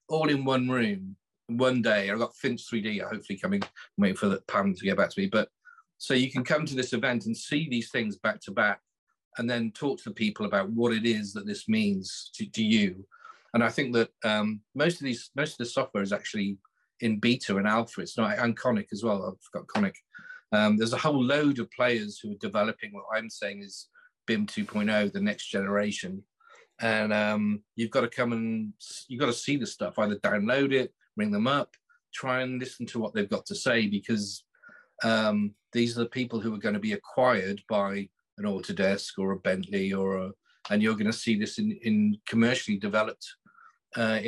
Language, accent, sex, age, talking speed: English, British, male, 40-59, 210 wpm